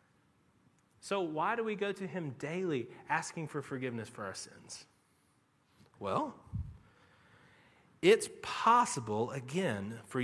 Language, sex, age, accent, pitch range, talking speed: English, male, 30-49, American, 160-245 Hz, 110 wpm